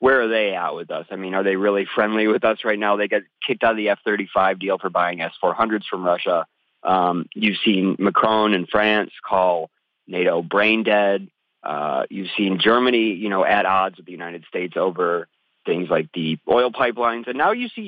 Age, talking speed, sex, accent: 30-49, 205 wpm, male, American